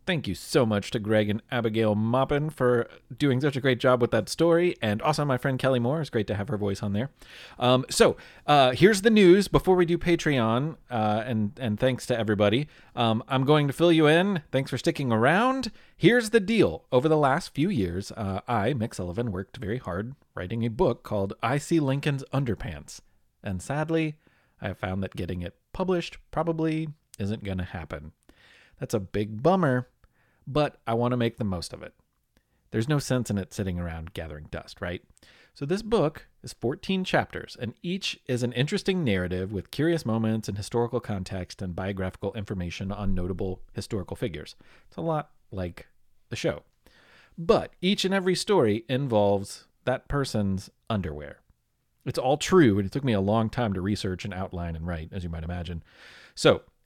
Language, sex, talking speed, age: English, male, 190 wpm, 30-49